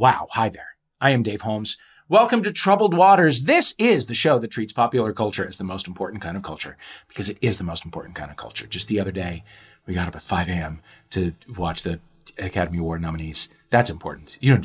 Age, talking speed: 30-49, 225 wpm